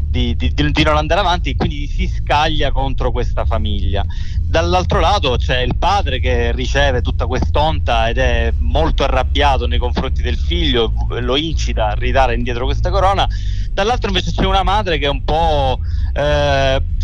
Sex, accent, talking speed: male, native, 165 wpm